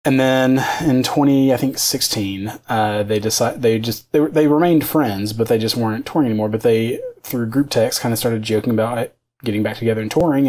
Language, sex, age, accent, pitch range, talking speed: English, male, 20-39, American, 110-125 Hz, 225 wpm